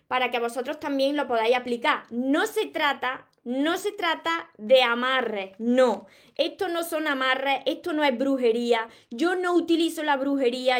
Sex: female